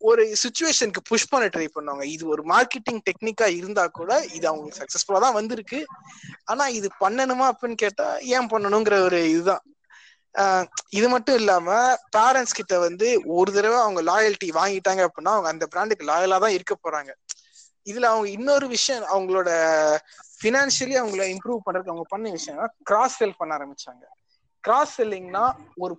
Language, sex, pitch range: Tamil, male, 185-245 Hz